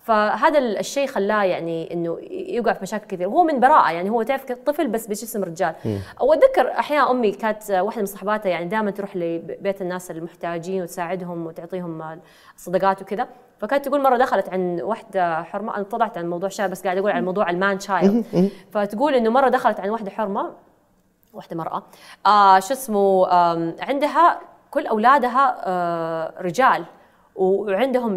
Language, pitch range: Arabic, 185-250 Hz